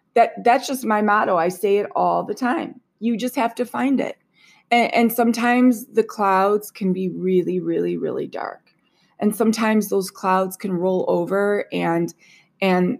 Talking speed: 170 wpm